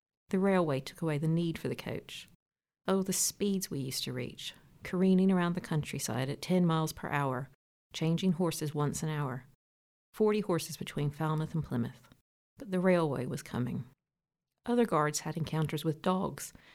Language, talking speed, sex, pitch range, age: English, 170 wpm, female, 140-185 Hz, 50-69